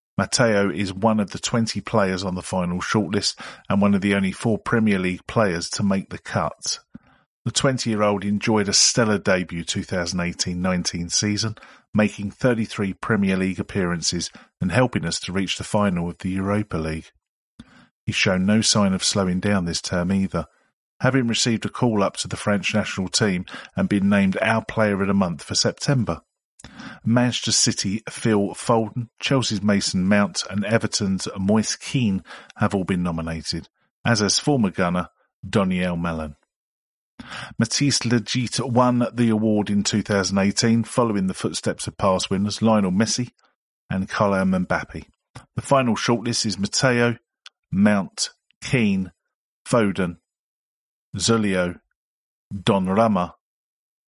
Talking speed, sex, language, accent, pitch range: 140 wpm, male, English, British, 95-115 Hz